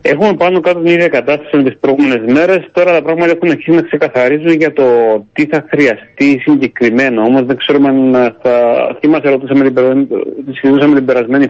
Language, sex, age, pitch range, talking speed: Greek, male, 30-49, 115-145 Hz, 170 wpm